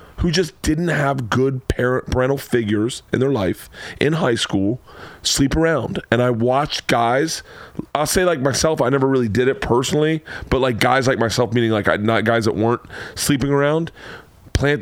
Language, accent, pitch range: English, American, 115-150 Hz